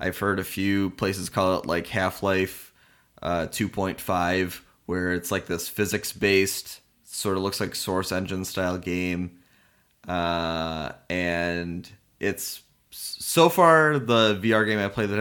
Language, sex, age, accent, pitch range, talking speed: English, male, 20-39, American, 90-100 Hz, 140 wpm